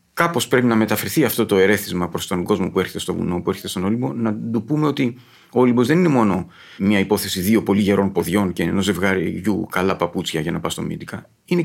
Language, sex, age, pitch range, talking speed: Greek, male, 40-59, 105-155 Hz, 230 wpm